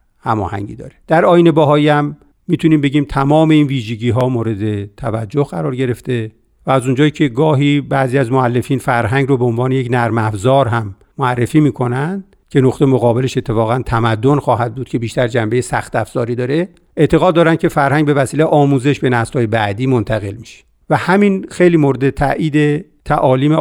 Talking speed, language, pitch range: 165 wpm, Persian, 120-150 Hz